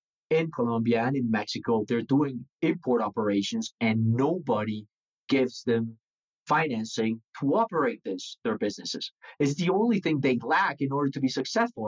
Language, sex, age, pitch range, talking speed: English, male, 30-49, 115-150 Hz, 150 wpm